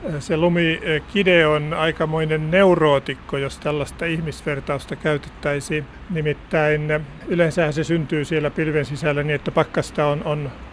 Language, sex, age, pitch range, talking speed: Finnish, male, 50-69, 150-175 Hz, 115 wpm